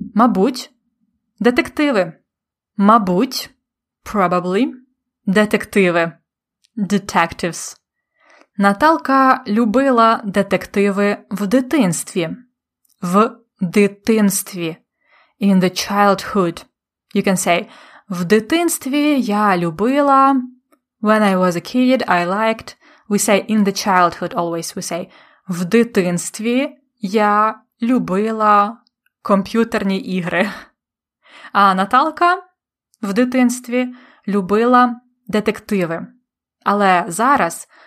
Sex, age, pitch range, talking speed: female, 20-39, 190-250 Hz, 80 wpm